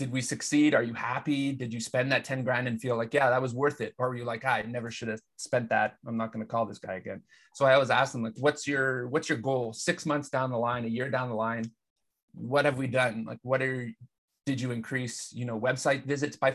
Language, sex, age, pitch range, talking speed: English, male, 30-49, 115-135 Hz, 270 wpm